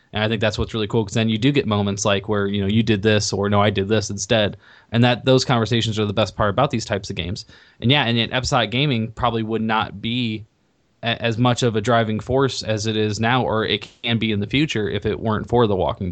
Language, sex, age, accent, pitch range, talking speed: English, male, 20-39, American, 105-115 Hz, 270 wpm